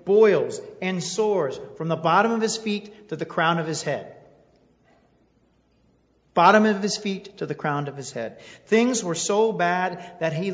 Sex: male